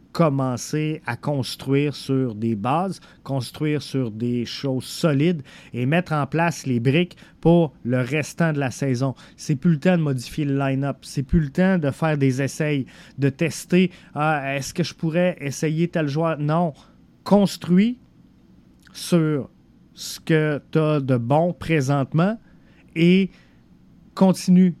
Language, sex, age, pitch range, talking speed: French, male, 30-49, 135-170 Hz, 150 wpm